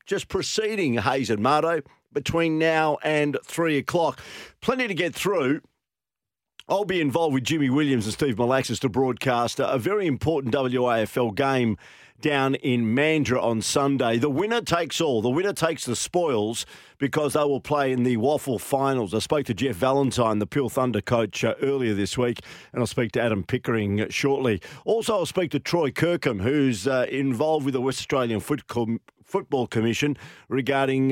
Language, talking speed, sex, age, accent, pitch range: English, 170 wpm, male, 50-69, Australian, 120-150 Hz